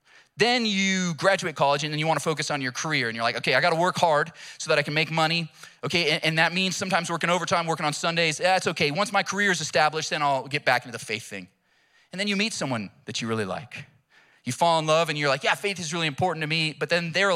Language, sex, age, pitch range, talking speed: English, male, 30-49, 140-185 Hz, 270 wpm